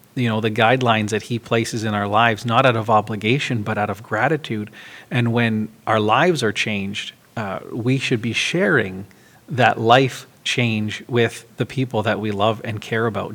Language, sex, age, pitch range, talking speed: English, male, 30-49, 105-120 Hz, 185 wpm